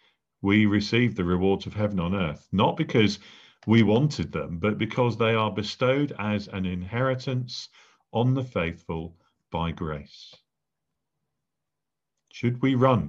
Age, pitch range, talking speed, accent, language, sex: 50-69, 90-120 Hz, 135 wpm, British, English, male